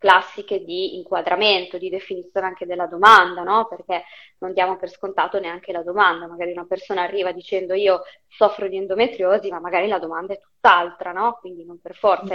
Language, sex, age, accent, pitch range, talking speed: Italian, female, 20-39, native, 180-215 Hz, 180 wpm